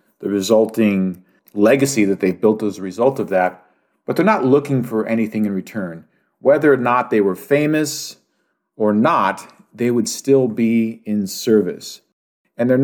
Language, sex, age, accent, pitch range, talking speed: English, male, 40-59, American, 105-135 Hz, 165 wpm